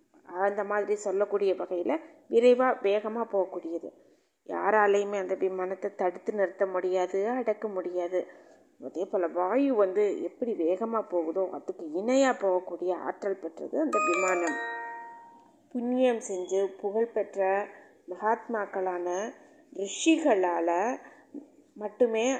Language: Tamil